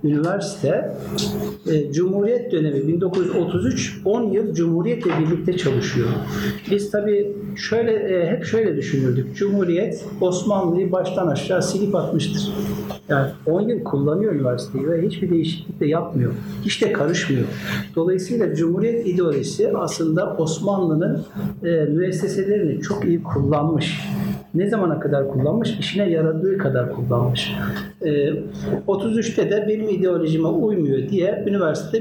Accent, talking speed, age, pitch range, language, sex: native, 115 wpm, 60-79, 160-200 Hz, Turkish, male